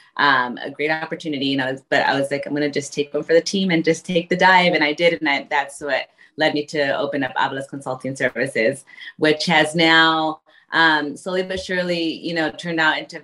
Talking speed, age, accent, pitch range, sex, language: 240 wpm, 30-49, American, 150-170 Hz, female, English